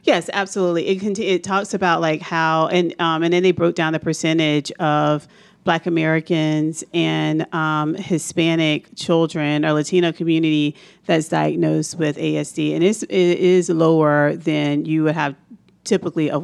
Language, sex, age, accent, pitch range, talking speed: English, female, 40-59, American, 155-180 Hz, 155 wpm